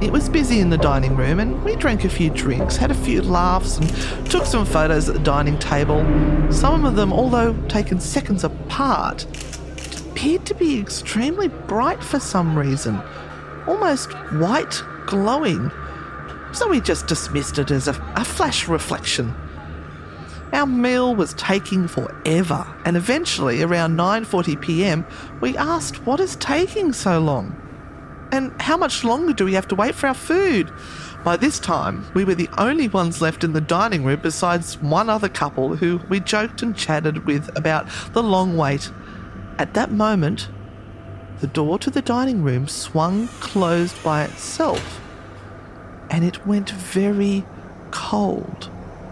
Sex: female